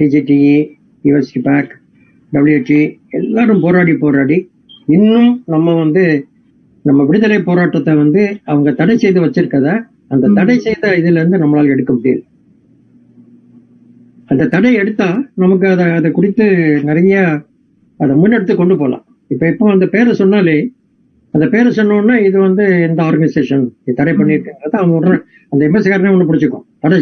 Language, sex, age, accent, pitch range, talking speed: Tamil, male, 60-79, native, 145-195 Hz, 45 wpm